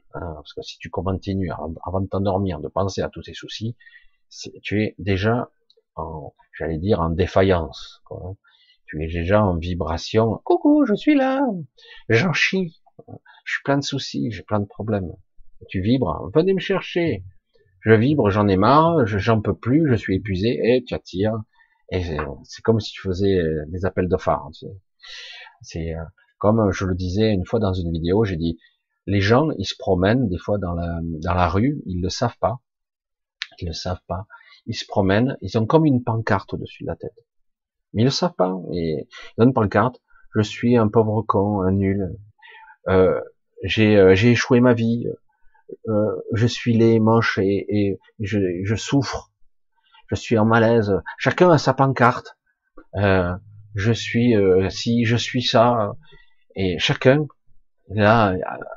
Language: French